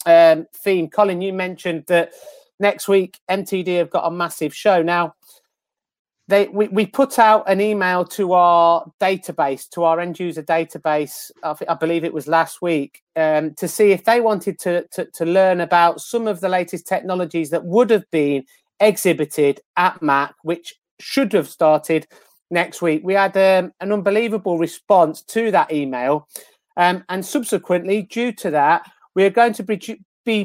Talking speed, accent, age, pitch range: 170 wpm, British, 30-49, 170-210 Hz